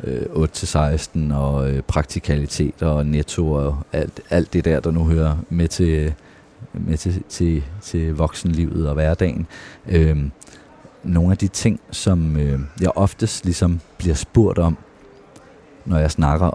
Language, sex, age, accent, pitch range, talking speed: Danish, male, 30-49, native, 75-100 Hz, 145 wpm